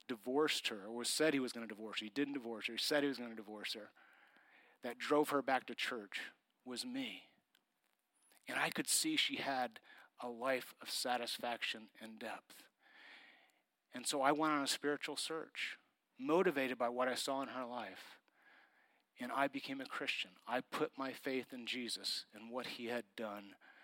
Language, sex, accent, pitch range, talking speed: English, male, American, 130-195 Hz, 185 wpm